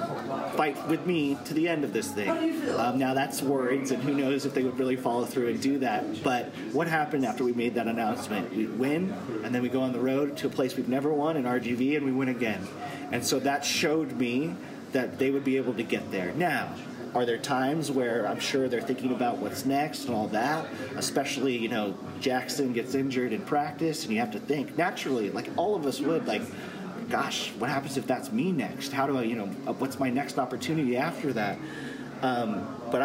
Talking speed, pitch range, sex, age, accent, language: 230 wpm, 120-140 Hz, male, 30-49, American, English